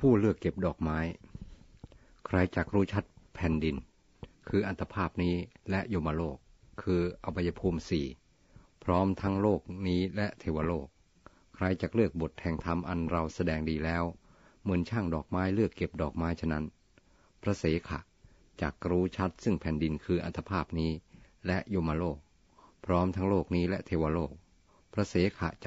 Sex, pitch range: male, 80-95 Hz